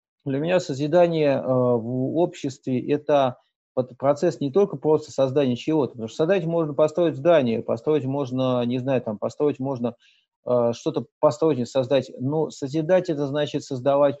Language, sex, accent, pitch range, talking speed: Russian, male, native, 120-145 Hz, 155 wpm